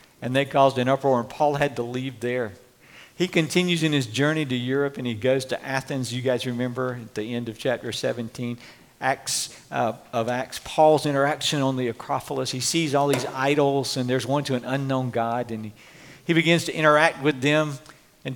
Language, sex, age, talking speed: English, male, 50-69, 205 wpm